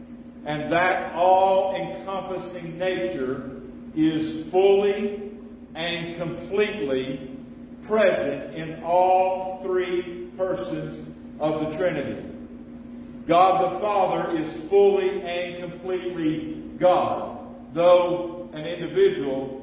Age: 50-69